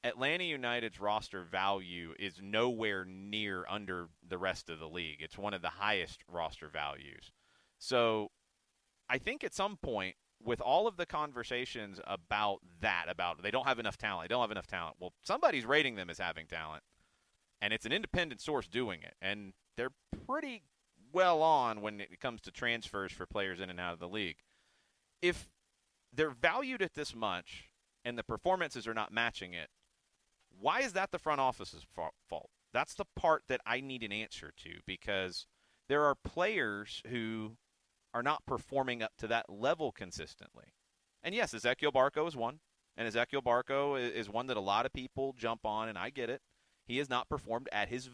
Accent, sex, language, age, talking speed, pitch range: American, male, English, 30-49, 180 wpm, 100-135 Hz